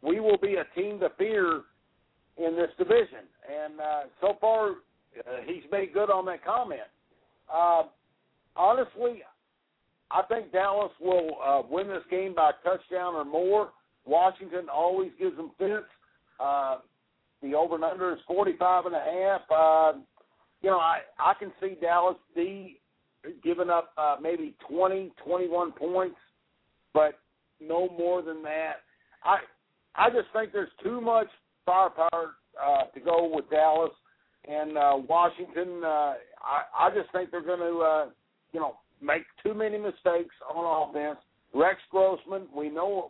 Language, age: English, 60-79